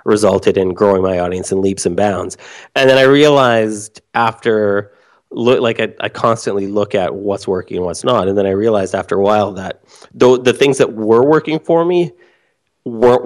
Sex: male